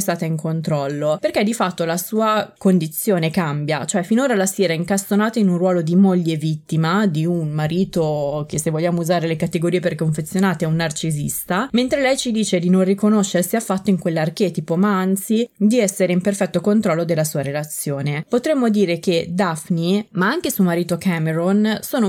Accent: native